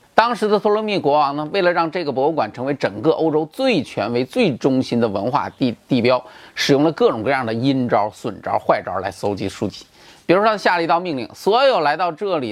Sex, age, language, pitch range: male, 30-49, Chinese, 150-210 Hz